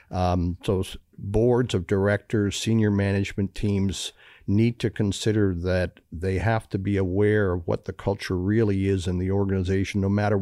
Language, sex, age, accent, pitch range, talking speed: English, male, 50-69, American, 90-105 Hz, 160 wpm